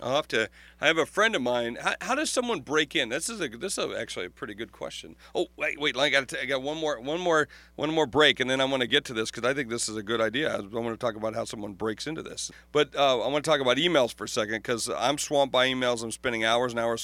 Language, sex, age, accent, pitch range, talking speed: English, male, 40-59, American, 125-155 Hz, 310 wpm